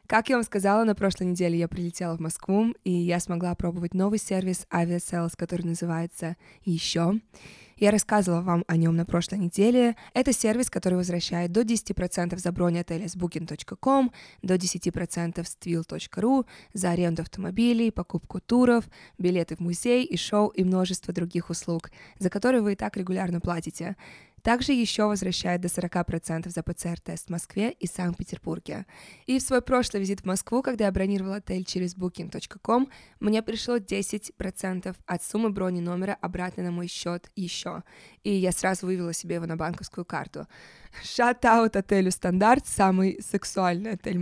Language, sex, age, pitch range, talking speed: Russian, female, 20-39, 175-215 Hz, 160 wpm